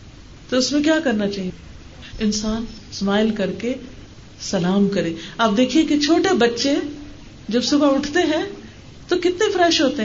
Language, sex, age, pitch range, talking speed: Urdu, female, 50-69, 200-295 Hz, 150 wpm